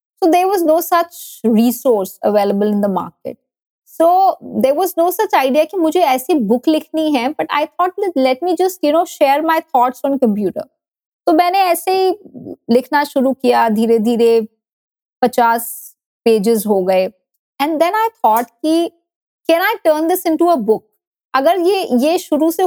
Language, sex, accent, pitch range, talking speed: Hindi, female, native, 230-325 Hz, 175 wpm